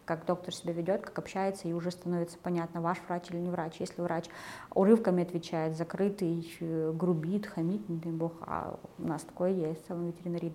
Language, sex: Russian, female